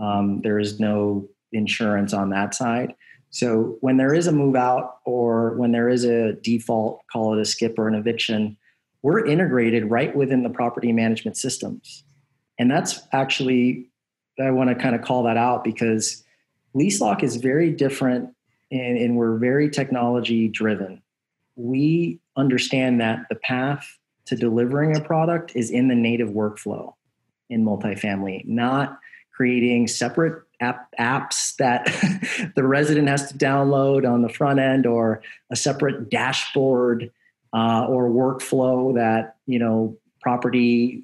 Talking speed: 145 wpm